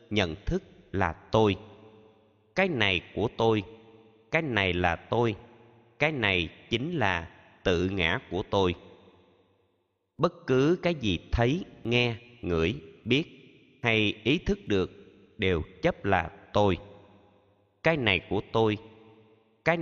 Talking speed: 125 wpm